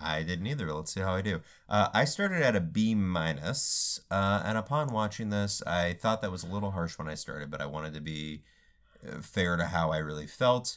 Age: 30-49